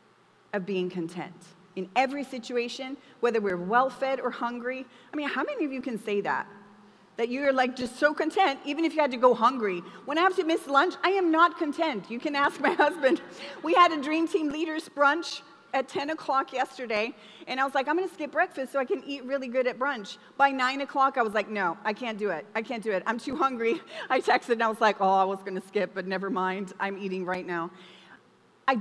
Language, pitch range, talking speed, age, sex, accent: English, 210-290 Hz, 235 wpm, 30-49, female, American